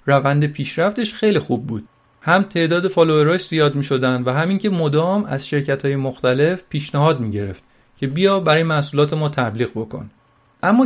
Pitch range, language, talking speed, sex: 135-185 Hz, Persian, 165 wpm, male